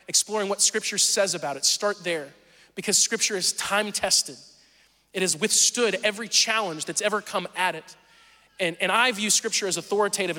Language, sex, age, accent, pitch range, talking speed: English, male, 20-39, American, 165-205 Hz, 170 wpm